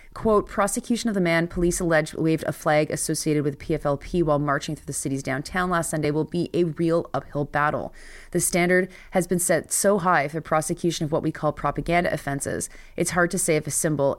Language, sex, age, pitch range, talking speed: English, female, 30-49, 150-175 Hz, 205 wpm